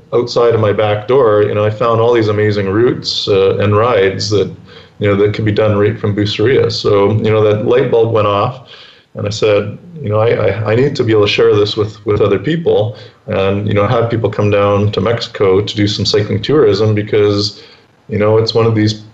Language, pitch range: English, 105-115 Hz